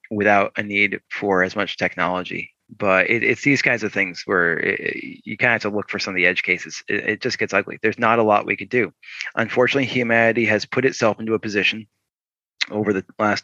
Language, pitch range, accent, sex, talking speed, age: English, 95-110 Hz, American, male, 220 wpm, 20-39